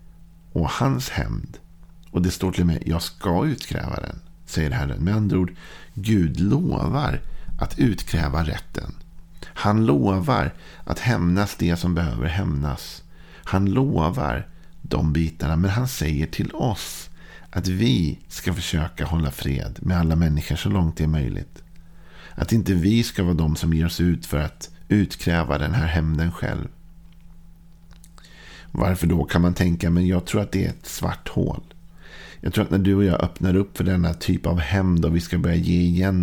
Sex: male